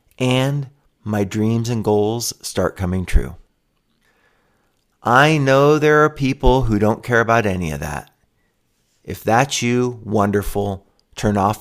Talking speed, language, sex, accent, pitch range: 135 wpm, English, male, American, 100-125 Hz